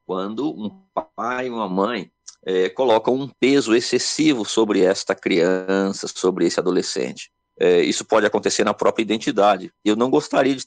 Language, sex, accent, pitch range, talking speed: Portuguese, male, Brazilian, 95-140 Hz, 145 wpm